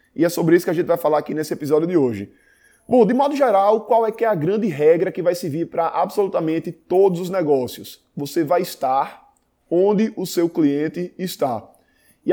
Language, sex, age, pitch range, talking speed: Portuguese, male, 20-39, 165-220 Hz, 200 wpm